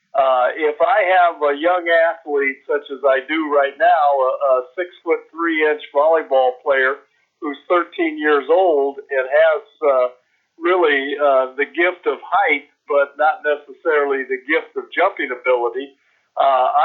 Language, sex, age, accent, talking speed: English, male, 50-69, American, 150 wpm